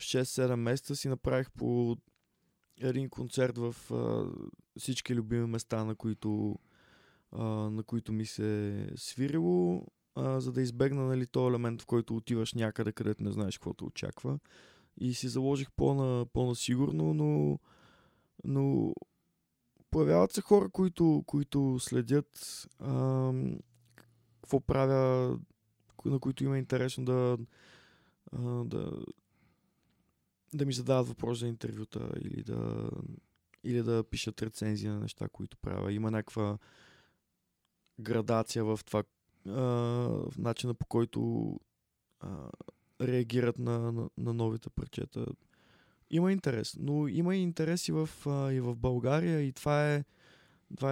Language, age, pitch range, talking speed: Bulgarian, 20-39, 110-140 Hz, 125 wpm